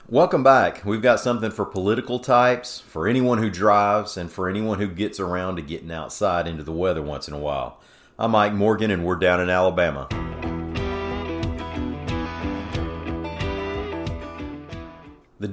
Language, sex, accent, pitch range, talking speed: English, male, American, 80-105 Hz, 145 wpm